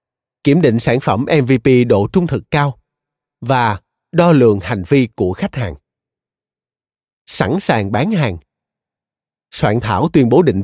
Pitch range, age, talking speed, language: 115-160 Hz, 20-39, 145 wpm, Vietnamese